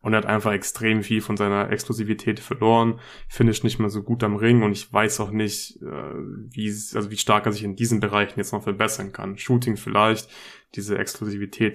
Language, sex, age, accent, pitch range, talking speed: German, male, 20-39, German, 105-120 Hz, 200 wpm